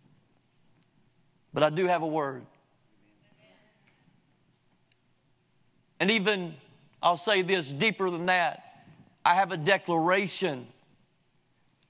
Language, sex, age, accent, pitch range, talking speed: English, male, 40-59, American, 180-245 Hz, 90 wpm